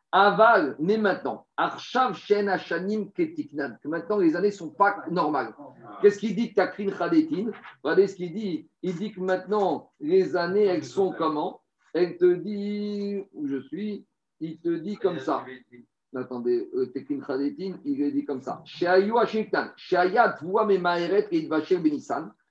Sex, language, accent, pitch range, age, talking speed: male, French, French, 180-250 Hz, 50-69, 145 wpm